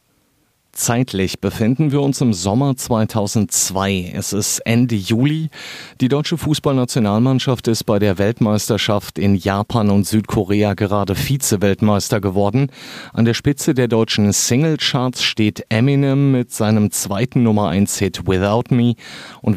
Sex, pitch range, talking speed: male, 100-125 Hz, 125 wpm